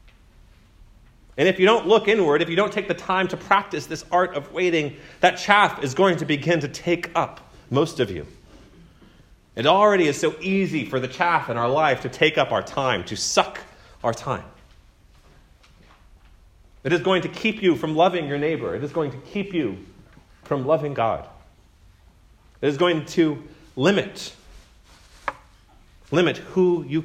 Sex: male